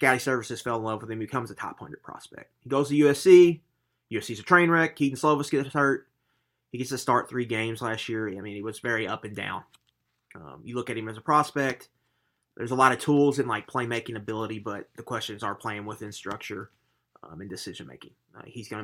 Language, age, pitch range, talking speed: English, 30-49, 110-130 Hz, 225 wpm